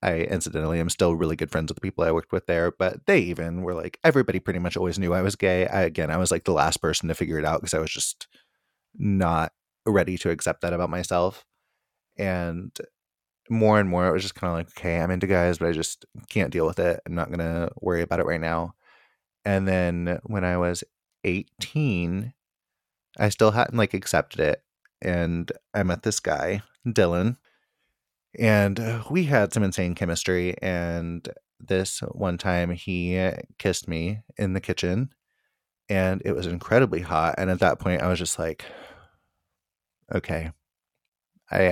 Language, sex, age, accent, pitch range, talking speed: English, male, 30-49, American, 85-100 Hz, 185 wpm